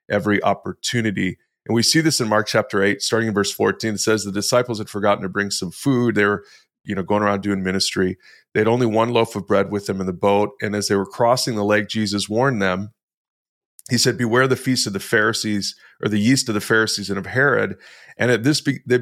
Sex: male